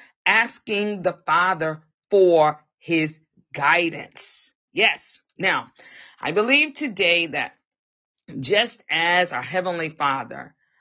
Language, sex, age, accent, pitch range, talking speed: English, female, 40-59, American, 155-250 Hz, 95 wpm